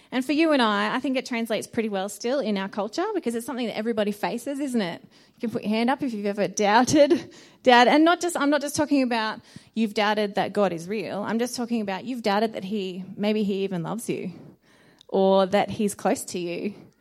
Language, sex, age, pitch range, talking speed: English, female, 20-39, 200-240 Hz, 235 wpm